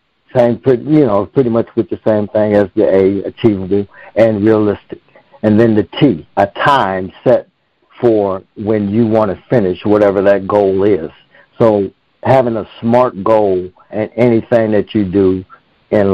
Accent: American